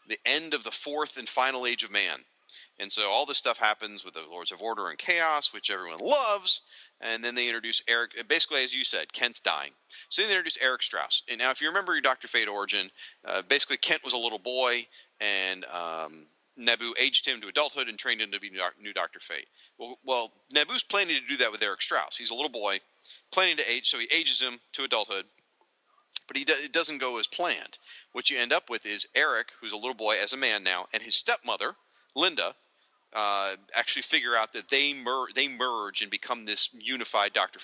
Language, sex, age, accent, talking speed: English, male, 40-59, American, 220 wpm